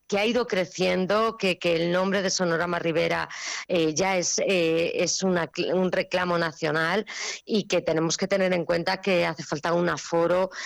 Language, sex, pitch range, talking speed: Spanish, female, 170-200 Hz, 180 wpm